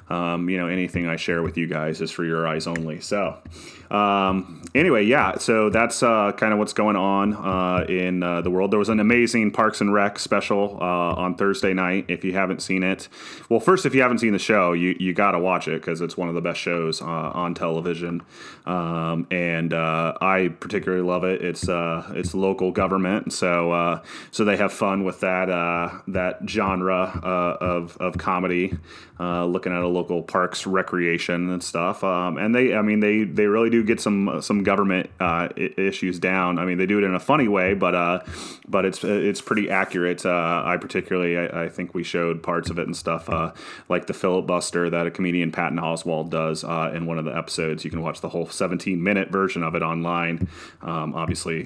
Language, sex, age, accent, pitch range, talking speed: English, male, 30-49, American, 85-95 Hz, 210 wpm